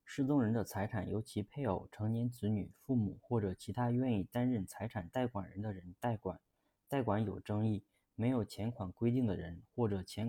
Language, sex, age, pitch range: Chinese, male, 20-39, 95-120 Hz